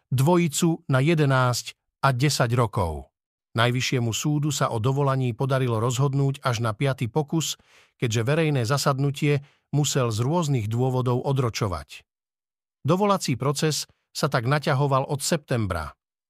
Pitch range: 120-150 Hz